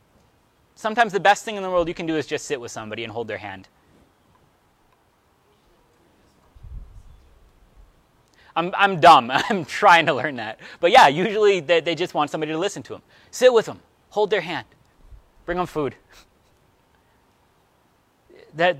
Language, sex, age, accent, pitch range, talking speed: English, male, 30-49, American, 115-160 Hz, 155 wpm